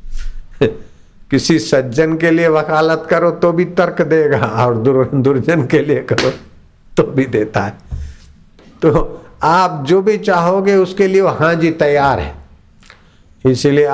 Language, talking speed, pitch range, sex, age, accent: Hindi, 135 wpm, 120-155 Hz, male, 50-69, native